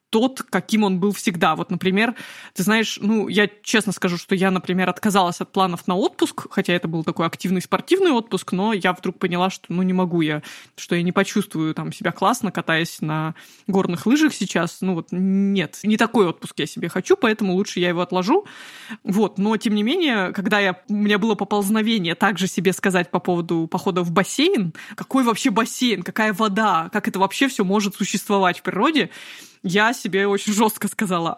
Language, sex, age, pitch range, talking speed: Russian, female, 20-39, 185-220 Hz, 190 wpm